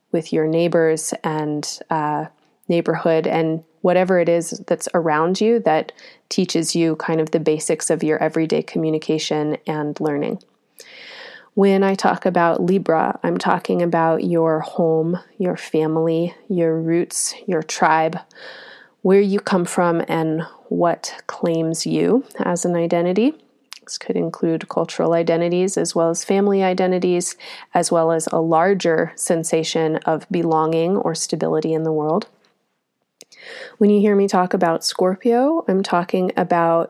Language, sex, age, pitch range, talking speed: English, female, 30-49, 165-185 Hz, 140 wpm